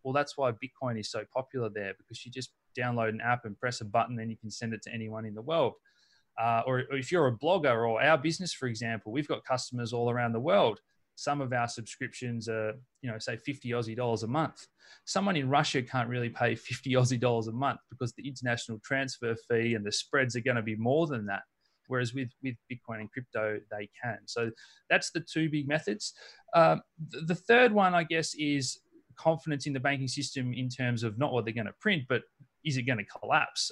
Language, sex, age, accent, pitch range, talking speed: English, male, 30-49, Australian, 115-140 Hz, 230 wpm